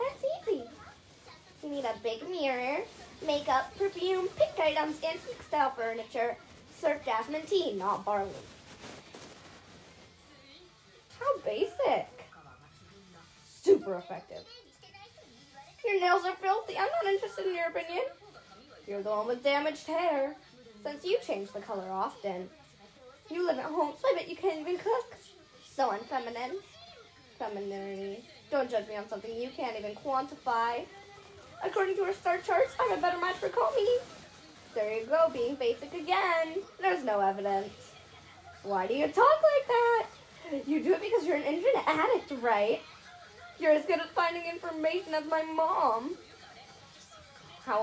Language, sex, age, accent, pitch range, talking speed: English, female, 10-29, American, 240-380 Hz, 140 wpm